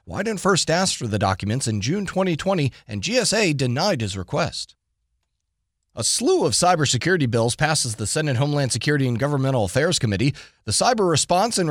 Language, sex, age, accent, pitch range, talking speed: English, male, 30-49, American, 125-180 Hz, 165 wpm